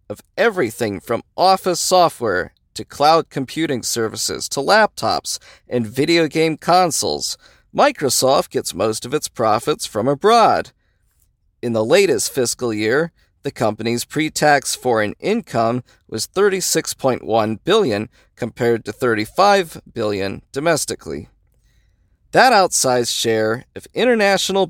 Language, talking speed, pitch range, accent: English, 110 wpm, 115-175 Hz, American